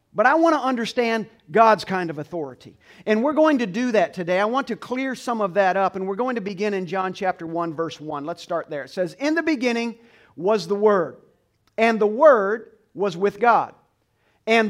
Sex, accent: male, American